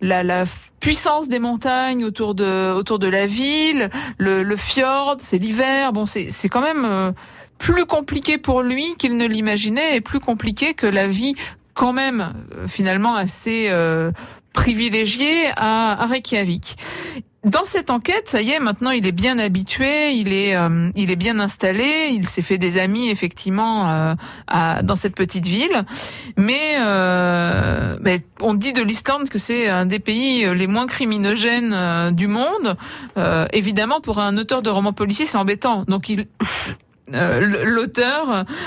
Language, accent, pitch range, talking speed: French, French, 190-245 Hz, 160 wpm